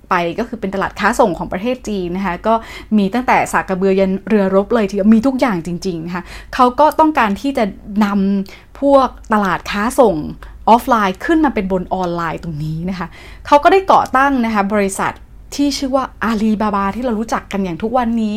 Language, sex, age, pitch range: Thai, female, 20-39, 190-245 Hz